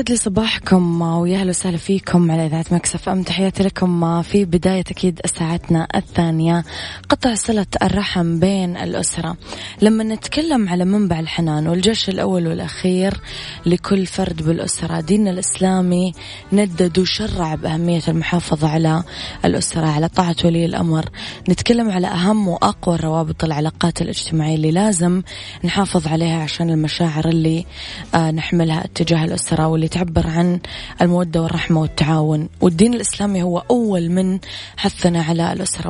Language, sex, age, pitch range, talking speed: Arabic, female, 20-39, 165-190 Hz, 120 wpm